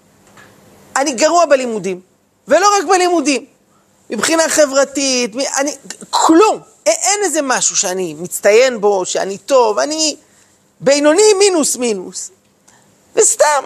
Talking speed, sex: 100 wpm, male